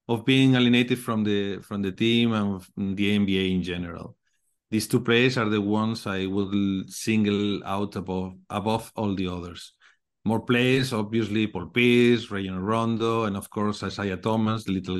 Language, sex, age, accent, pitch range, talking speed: English, male, 50-69, Spanish, 100-115 Hz, 170 wpm